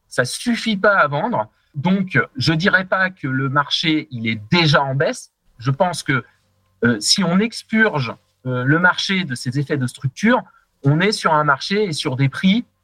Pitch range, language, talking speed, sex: 120-180 Hz, French, 200 wpm, male